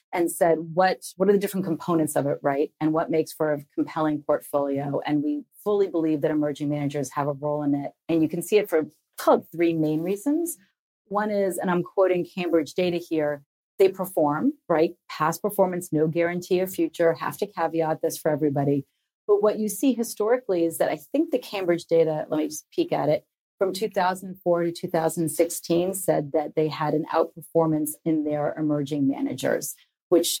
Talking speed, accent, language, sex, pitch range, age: 185 wpm, American, English, female, 150-185 Hz, 40-59